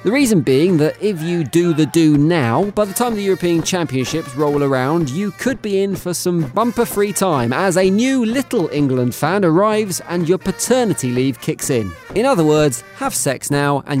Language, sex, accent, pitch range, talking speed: English, male, British, 135-200 Hz, 195 wpm